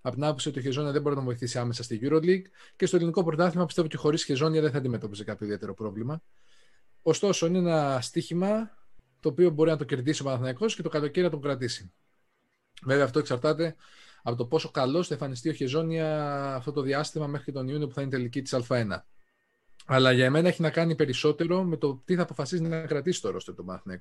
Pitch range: 120-160 Hz